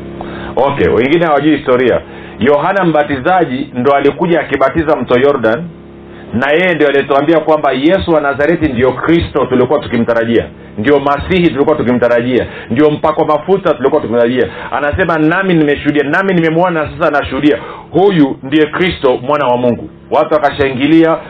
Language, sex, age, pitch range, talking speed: Swahili, male, 40-59, 130-165 Hz, 135 wpm